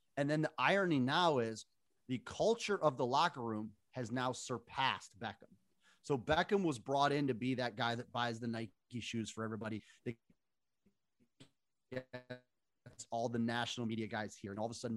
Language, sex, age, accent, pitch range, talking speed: English, male, 30-49, American, 115-155 Hz, 175 wpm